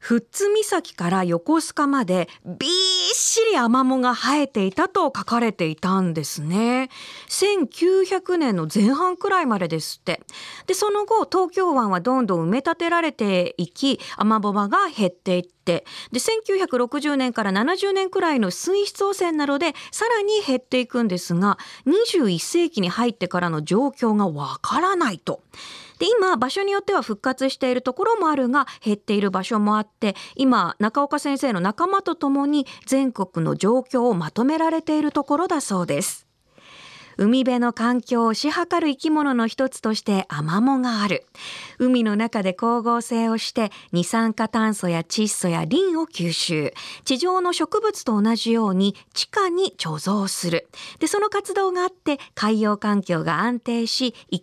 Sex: female